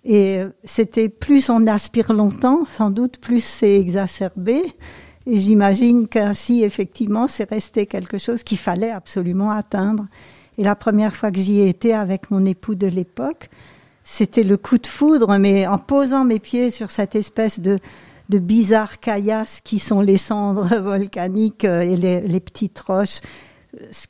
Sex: female